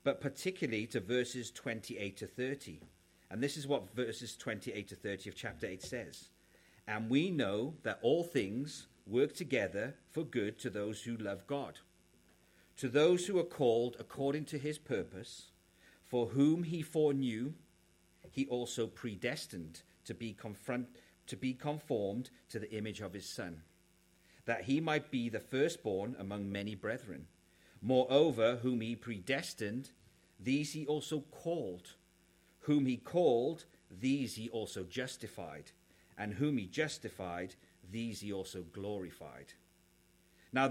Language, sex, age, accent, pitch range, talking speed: English, male, 40-59, British, 95-135 Hz, 140 wpm